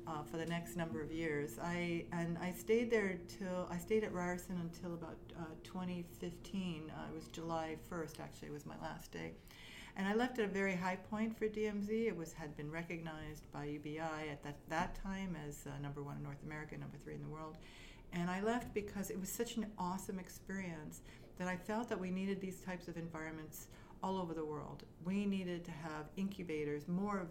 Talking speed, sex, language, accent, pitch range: 210 wpm, female, English, American, 160-195 Hz